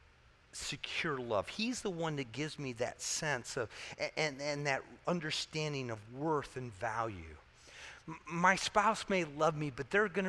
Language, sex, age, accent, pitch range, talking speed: English, male, 40-59, American, 120-190 Hz, 170 wpm